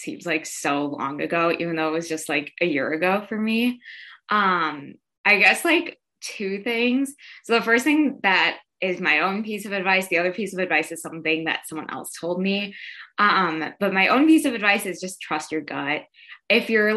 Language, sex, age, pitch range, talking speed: English, female, 20-39, 165-210 Hz, 210 wpm